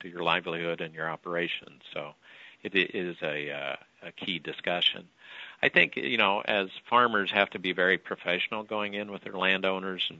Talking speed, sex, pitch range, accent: 180 wpm, male, 85-95 Hz, American